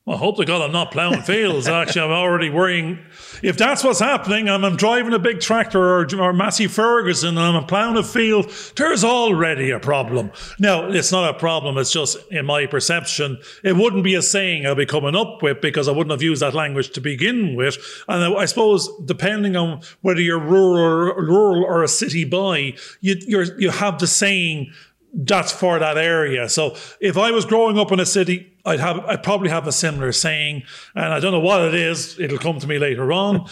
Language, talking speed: English, 215 wpm